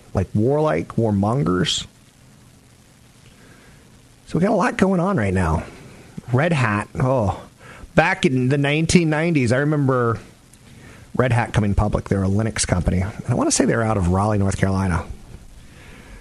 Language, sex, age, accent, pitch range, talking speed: English, male, 40-59, American, 95-120 Hz, 145 wpm